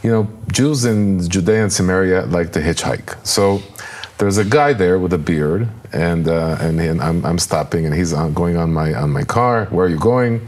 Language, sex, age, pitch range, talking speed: English, male, 40-59, 95-115 Hz, 205 wpm